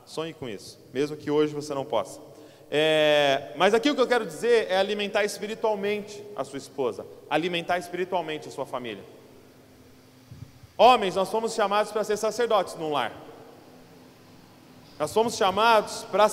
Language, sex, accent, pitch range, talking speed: Portuguese, male, Brazilian, 135-210 Hz, 150 wpm